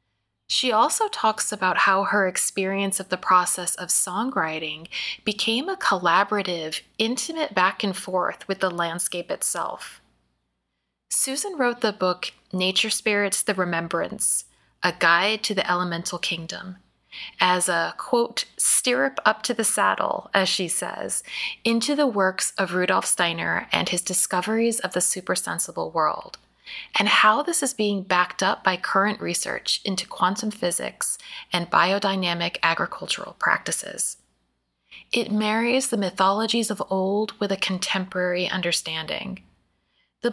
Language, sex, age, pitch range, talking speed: English, female, 20-39, 175-220 Hz, 130 wpm